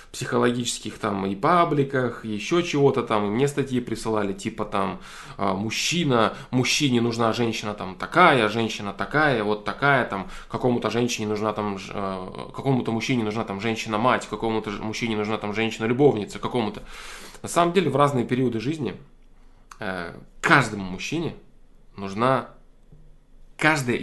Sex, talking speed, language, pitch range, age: male, 125 wpm, Russian, 105-125 Hz, 20-39